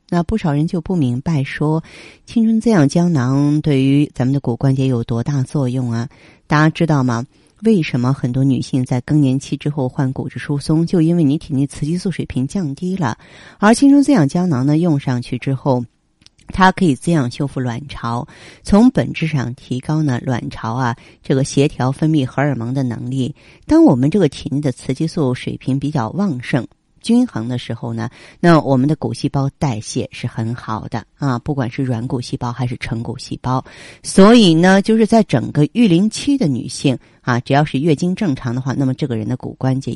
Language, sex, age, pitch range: Chinese, female, 30-49, 125-155 Hz